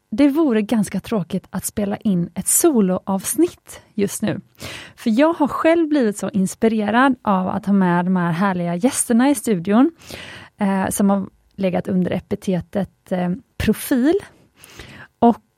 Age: 30-49